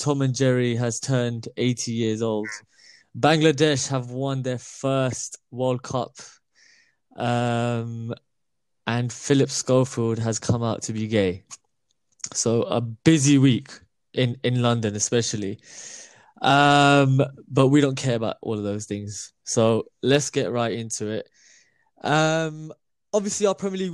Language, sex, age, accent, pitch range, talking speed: English, male, 20-39, British, 120-145 Hz, 135 wpm